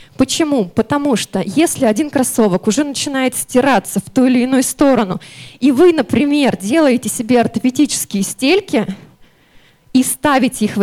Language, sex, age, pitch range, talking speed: Russian, female, 20-39, 225-295 Hz, 140 wpm